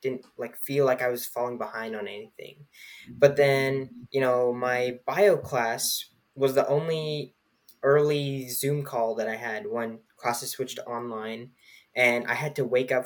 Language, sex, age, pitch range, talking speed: English, male, 10-29, 125-150 Hz, 165 wpm